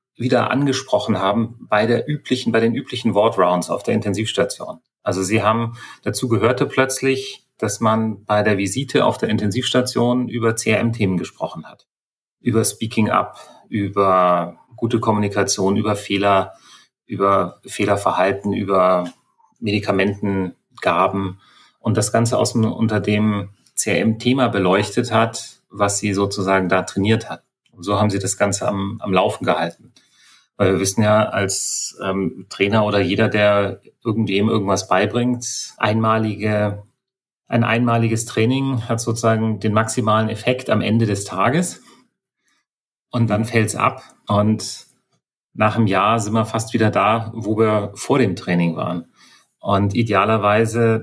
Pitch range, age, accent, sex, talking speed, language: 100-115 Hz, 30-49, German, male, 140 wpm, German